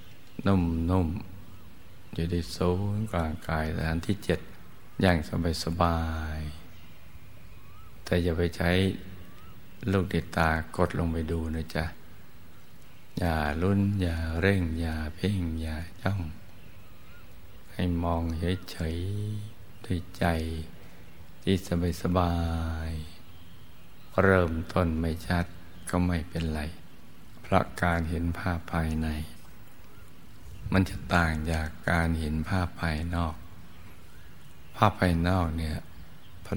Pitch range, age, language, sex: 80-90 Hz, 60-79, Thai, male